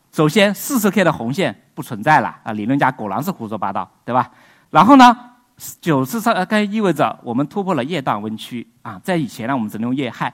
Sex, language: male, Chinese